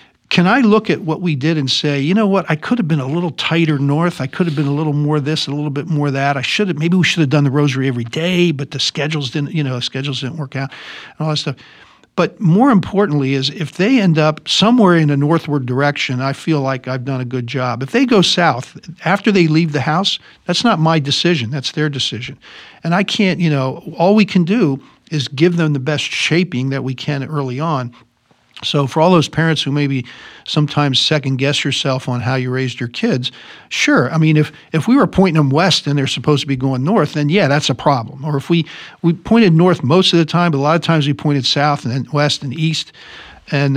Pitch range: 135-170 Hz